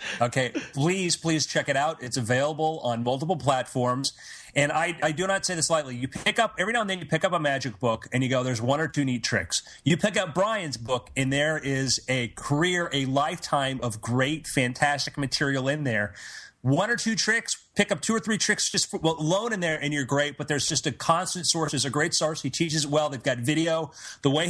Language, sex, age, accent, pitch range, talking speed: English, male, 30-49, American, 130-165 Hz, 240 wpm